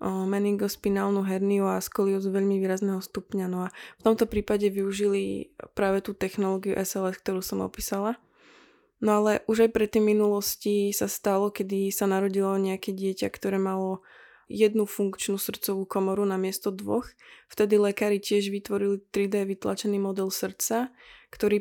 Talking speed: 145 wpm